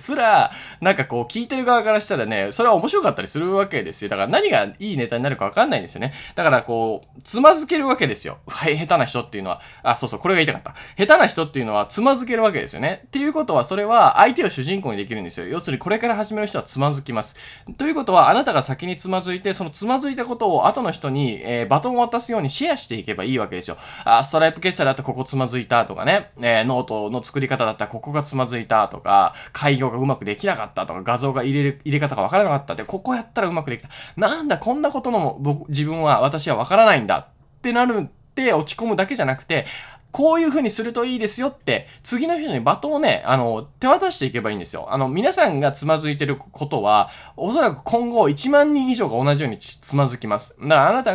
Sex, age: male, 20-39